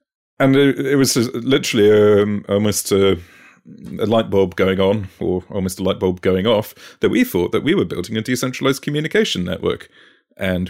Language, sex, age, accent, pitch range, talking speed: English, male, 30-49, British, 95-115 Hz, 175 wpm